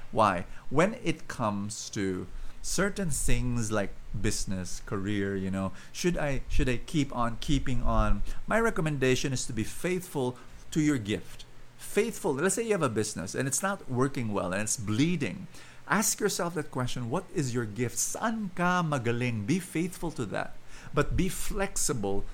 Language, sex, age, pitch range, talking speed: English, male, 50-69, 115-185 Hz, 165 wpm